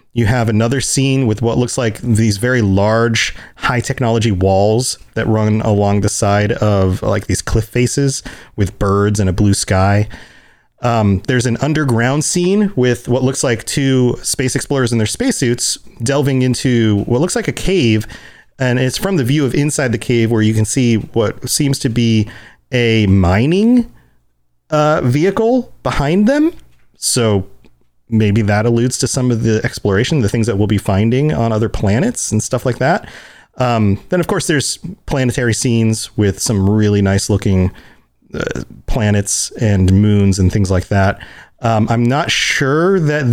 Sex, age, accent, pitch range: male, 30-49, American, 110-140 Hz